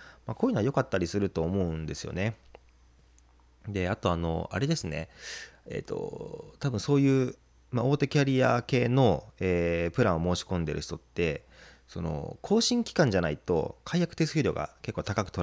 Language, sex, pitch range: Japanese, male, 80-120 Hz